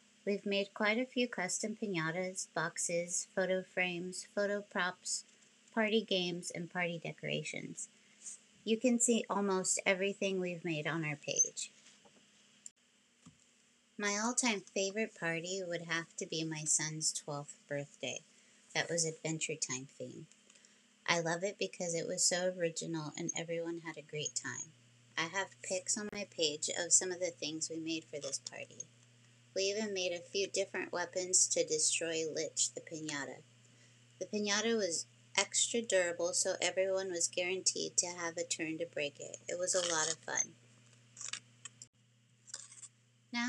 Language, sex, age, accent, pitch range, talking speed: English, female, 30-49, American, 155-200 Hz, 150 wpm